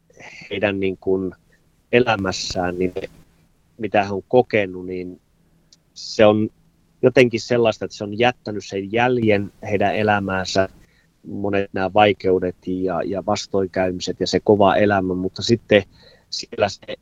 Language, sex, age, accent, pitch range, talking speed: Finnish, male, 30-49, native, 95-115 Hz, 125 wpm